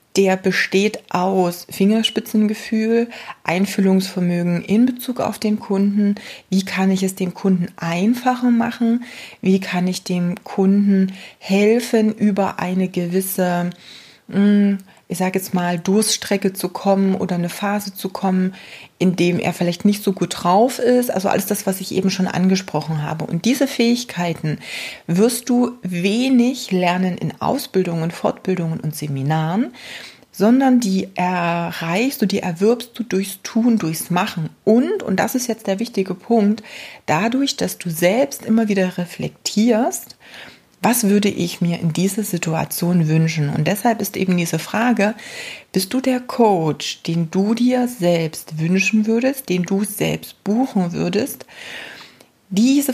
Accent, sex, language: German, female, German